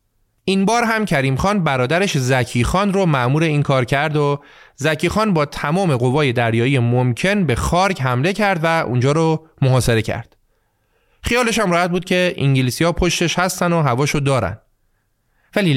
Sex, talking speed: male, 160 wpm